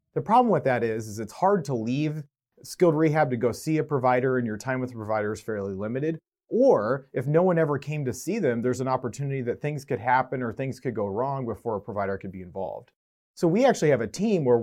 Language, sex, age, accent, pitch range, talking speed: English, male, 30-49, American, 115-145 Hz, 245 wpm